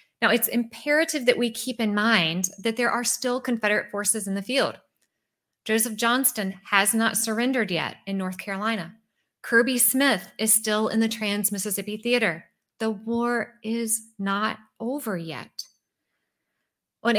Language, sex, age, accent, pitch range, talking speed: English, female, 20-39, American, 190-235 Hz, 145 wpm